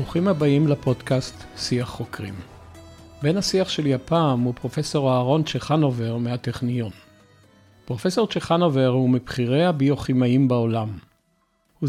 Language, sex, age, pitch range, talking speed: Hebrew, male, 50-69, 125-155 Hz, 105 wpm